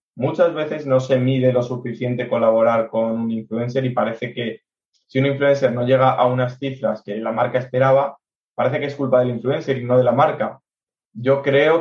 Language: Spanish